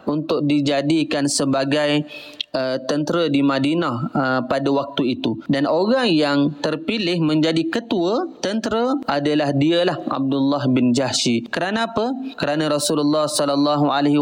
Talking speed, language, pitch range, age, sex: 120 wpm, Malay, 145-170 Hz, 30-49, male